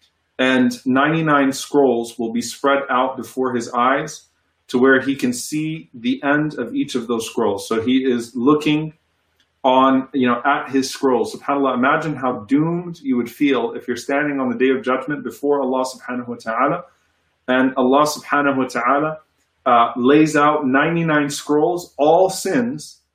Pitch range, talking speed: 125-150 Hz, 165 wpm